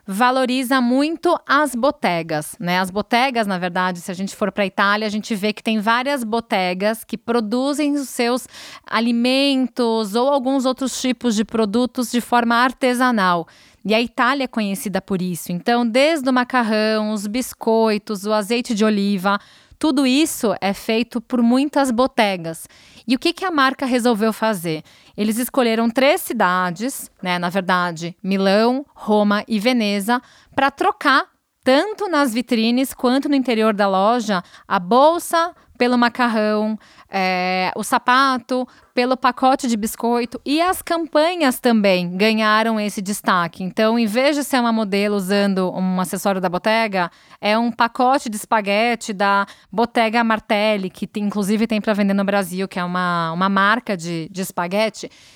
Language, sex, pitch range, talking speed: Portuguese, female, 200-255 Hz, 155 wpm